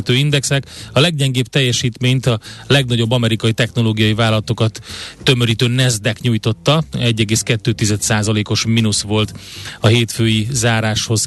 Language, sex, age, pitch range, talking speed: Hungarian, male, 30-49, 110-125 Hz, 95 wpm